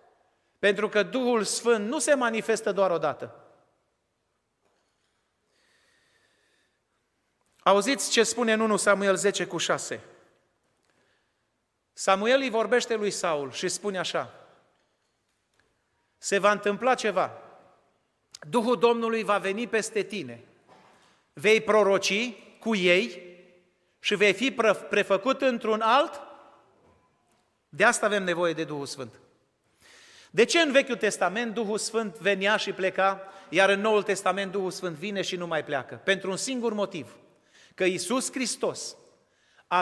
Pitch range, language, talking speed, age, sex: 190-245 Hz, Romanian, 120 wpm, 40-59, male